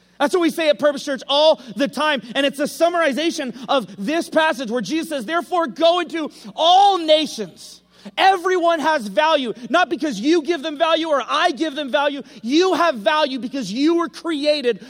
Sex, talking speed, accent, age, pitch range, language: male, 185 wpm, American, 30-49, 265-320 Hz, English